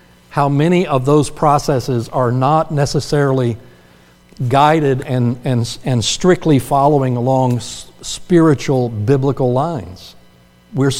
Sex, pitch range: male, 120-160 Hz